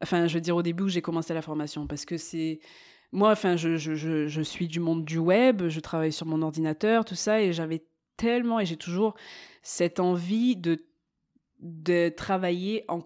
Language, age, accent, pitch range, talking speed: French, 20-39, French, 165-215 Hz, 200 wpm